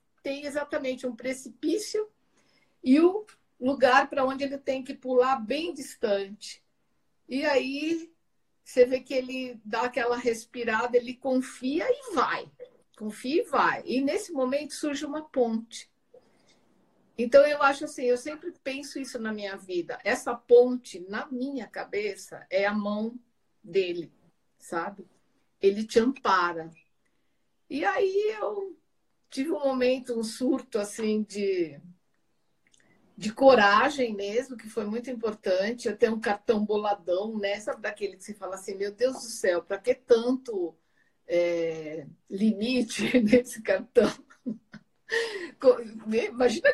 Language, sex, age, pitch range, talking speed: Portuguese, female, 50-69, 215-275 Hz, 130 wpm